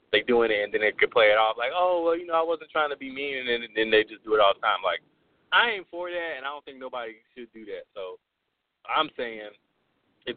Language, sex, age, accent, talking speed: English, male, 30-49, American, 285 wpm